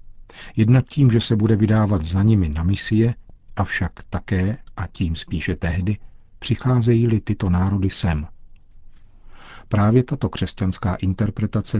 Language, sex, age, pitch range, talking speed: Czech, male, 50-69, 95-105 Hz, 120 wpm